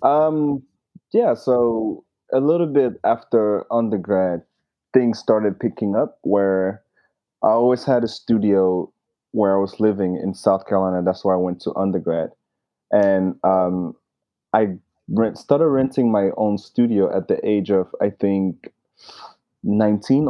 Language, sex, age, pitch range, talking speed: English, male, 20-39, 95-110 Hz, 140 wpm